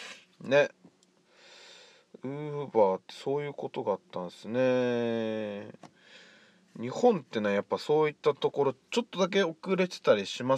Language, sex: Japanese, male